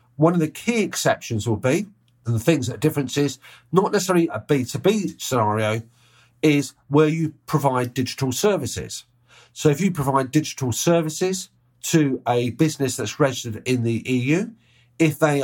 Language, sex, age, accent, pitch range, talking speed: English, male, 50-69, British, 120-155 Hz, 155 wpm